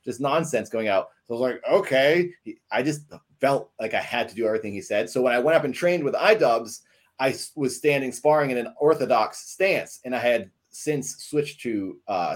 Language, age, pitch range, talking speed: English, 30-49, 110-155 Hz, 220 wpm